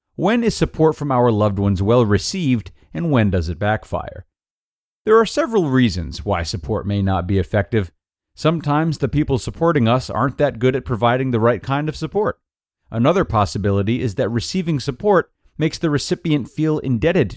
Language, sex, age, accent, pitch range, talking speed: English, male, 40-59, American, 100-145 Hz, 170 wpm